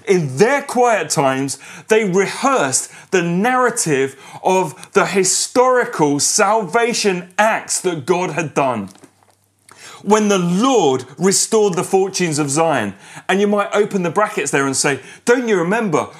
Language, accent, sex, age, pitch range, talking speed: English, British, male, 30-49, 170-220 Hz, 135 wpm